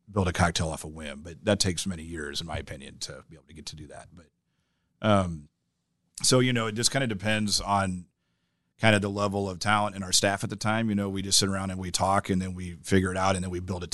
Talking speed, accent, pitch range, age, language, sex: 280 wpm, American, 85-100 Hz, 40-59, English, male